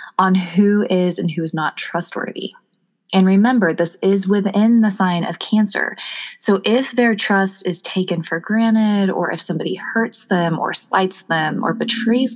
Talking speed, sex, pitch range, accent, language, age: 170 wpm, female, 170-210 Hz, American, English, 20-39